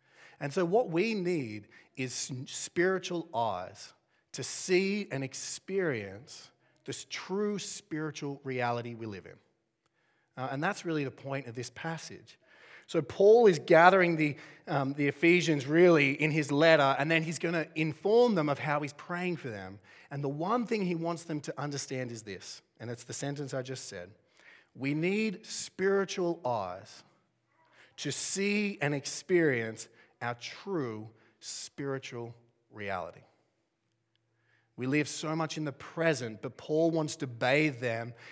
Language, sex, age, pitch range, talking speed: English, male, 30-49, 125-165 Hz, 150 wpm